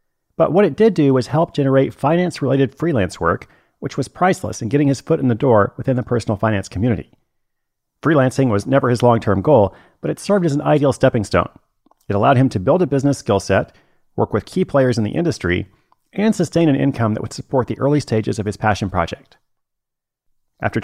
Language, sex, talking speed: English, male, 205 wpm